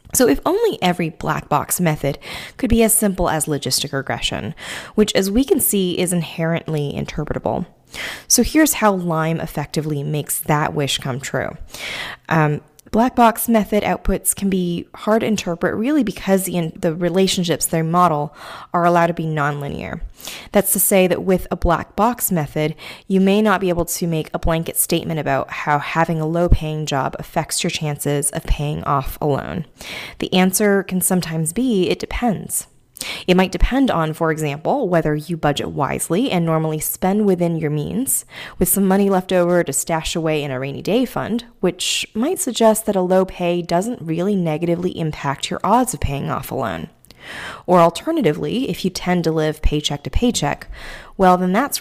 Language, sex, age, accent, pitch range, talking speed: English, female, 20-39, American, 155-195 Hz, 180 wpm